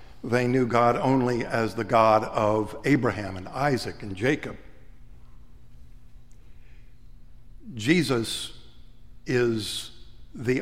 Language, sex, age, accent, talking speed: English, male, 60-79, American, 90 wpm